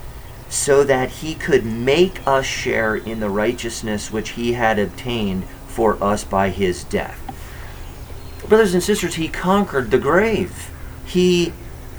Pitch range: 115-175 Hz